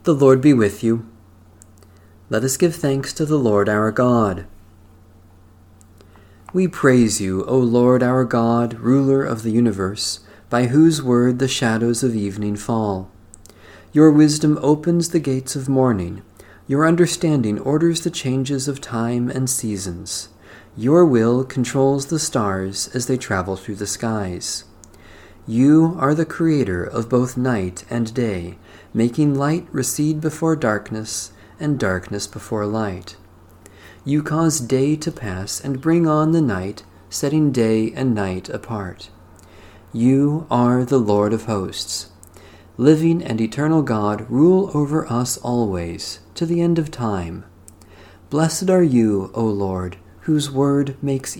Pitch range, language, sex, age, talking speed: 95-135 Hz, English, male, 40-59, 140 wpm